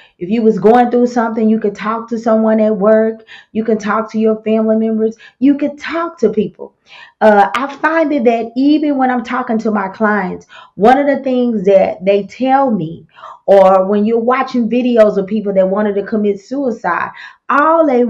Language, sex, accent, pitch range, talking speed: English, female, American, 200-240 Hz, 195 wpm